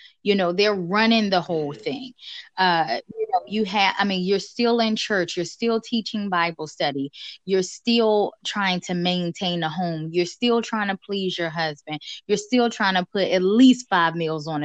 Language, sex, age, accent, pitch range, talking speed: English, female, 20-39, American, 180-250 Hz, 195 wpm